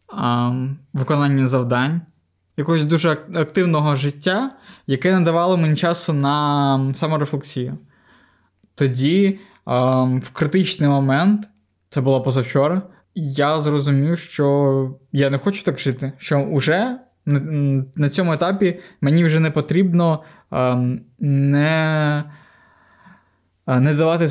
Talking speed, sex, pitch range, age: 100 wpm, male, 130-155 Hz, 20-39